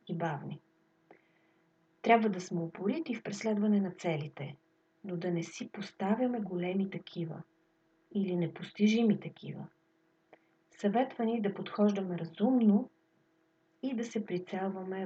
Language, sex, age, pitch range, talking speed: Bulgarian, female, 40-59, 170-215 Hz, 110 wpm